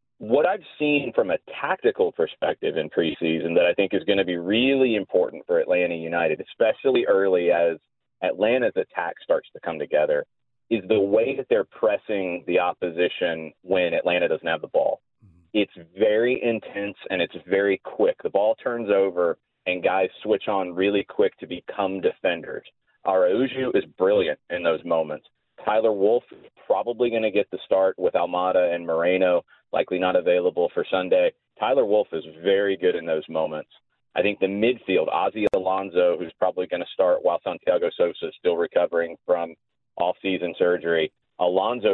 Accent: American